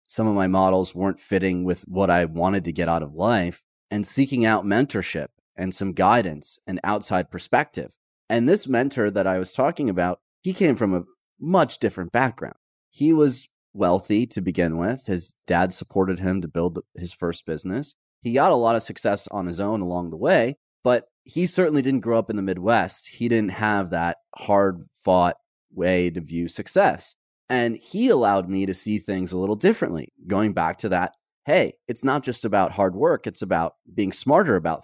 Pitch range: 90-110 Hz